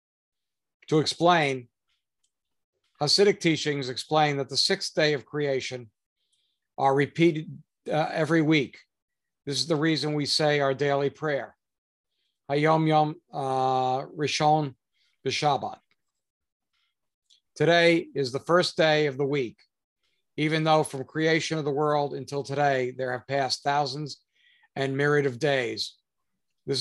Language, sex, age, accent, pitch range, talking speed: English, male, 50-69, American, 135-155 Hz, 125 wpm